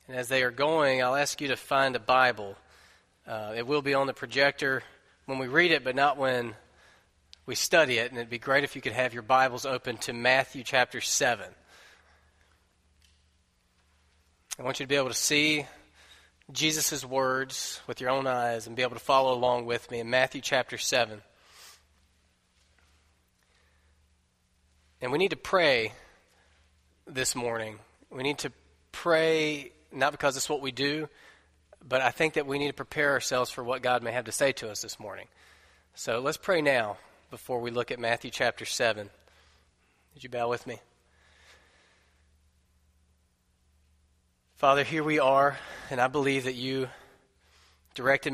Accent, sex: American, male